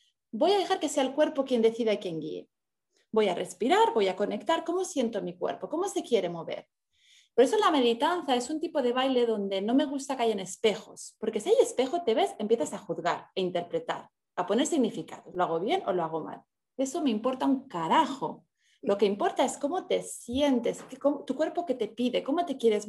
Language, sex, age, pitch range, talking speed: Spanish, female, 30-49, 205-290 Hz, 225 wpm